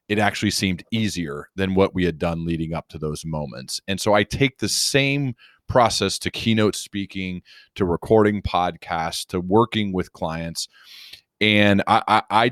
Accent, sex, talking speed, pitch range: American, male, 165 wpm, 95-130 Hz